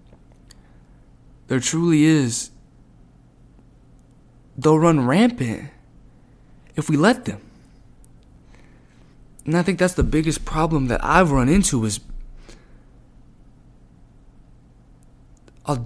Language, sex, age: English, male, 20-39